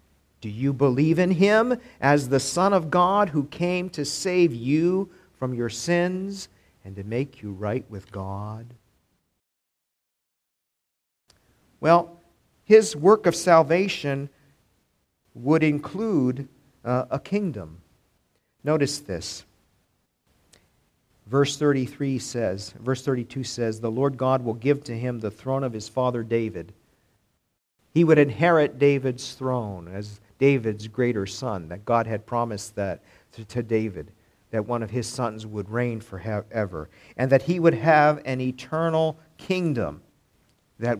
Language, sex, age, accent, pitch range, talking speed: English, male, 50-69, American, 110-145 Hz, 130 wpm